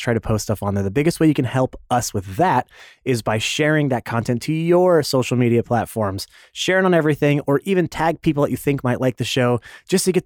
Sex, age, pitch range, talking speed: male, 30-49, 120-150 Hz, 245 wpm